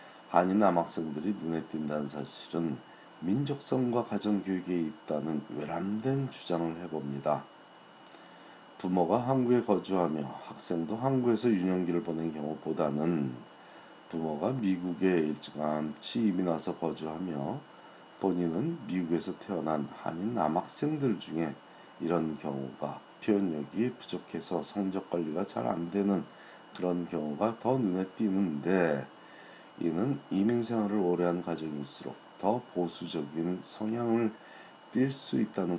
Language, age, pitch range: Korean, 40-59, 80-105 Hz